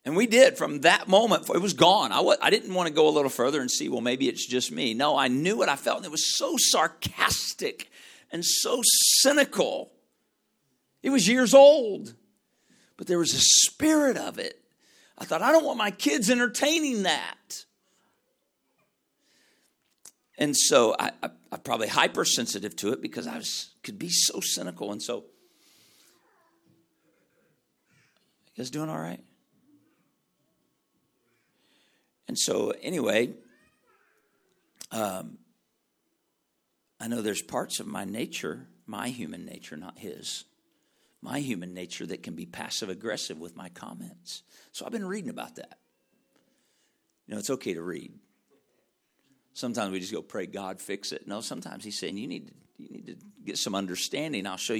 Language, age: English, 50-69